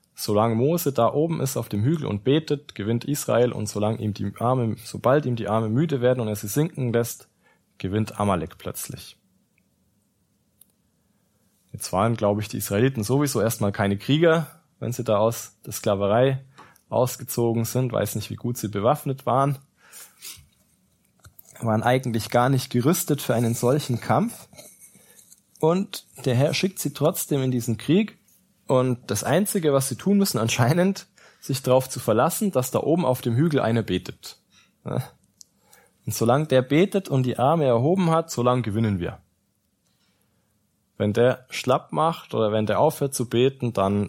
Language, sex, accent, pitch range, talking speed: German, male, German, 105-140 Hz, 160 wpm